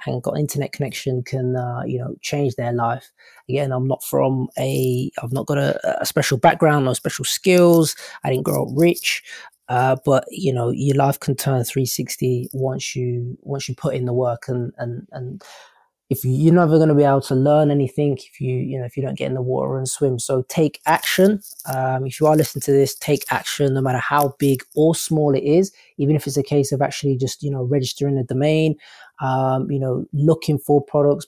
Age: 20-39